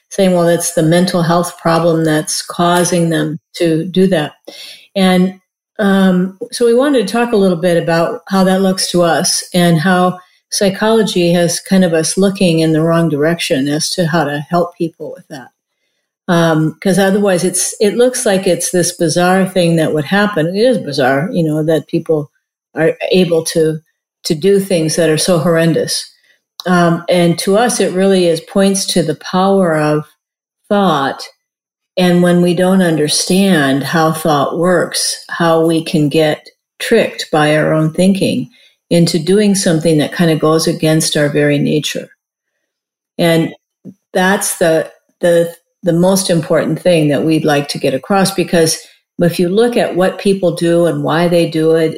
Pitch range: 160-190 Hz